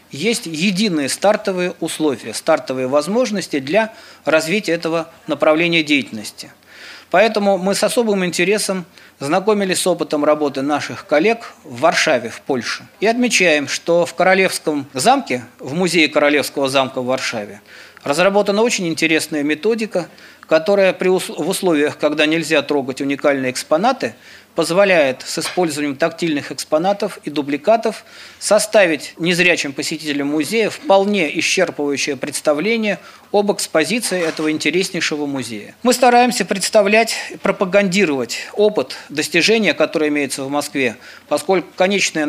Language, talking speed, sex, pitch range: Russian, 115 wpm, male, 150-205 Hz